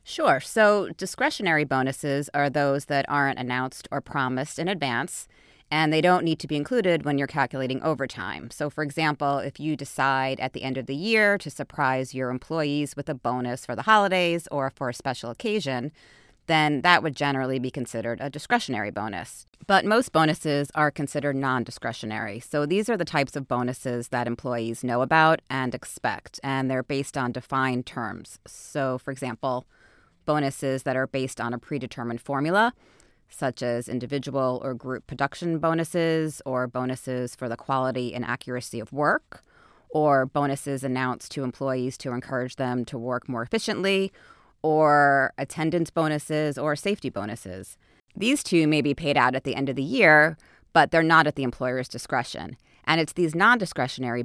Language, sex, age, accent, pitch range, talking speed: English, female, 30-49, American, 125-155 Hz, 170 wpm